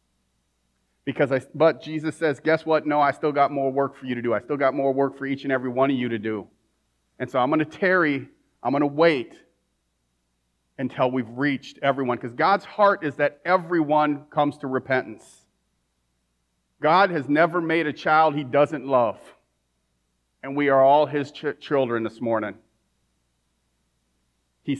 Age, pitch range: 40-59, 110-165 Hz